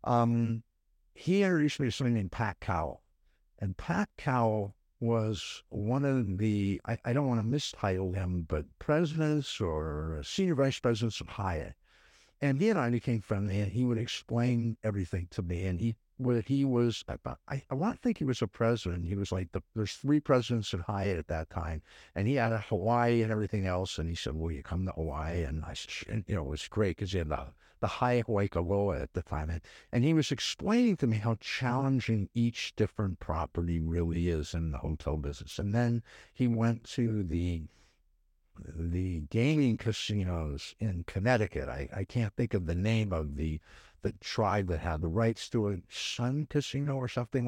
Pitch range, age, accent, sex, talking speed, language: 85-120 Hz, 60-79, American, male, 195 wpm, English